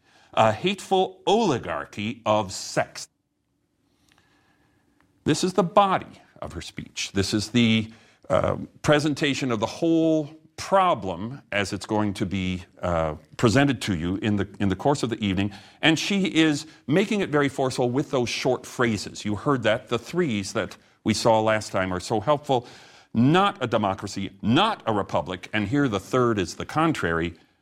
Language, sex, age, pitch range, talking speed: English, male, 40-59, 100-145 Hz, 165 wpm